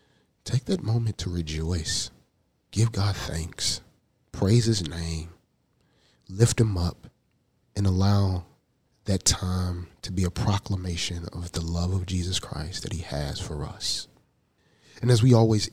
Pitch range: 85-110 Hz